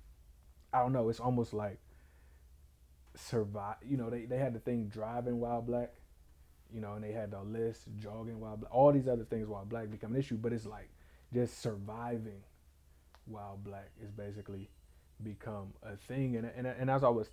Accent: American